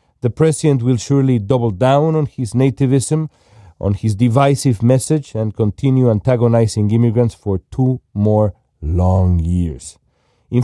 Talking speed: 130 wpm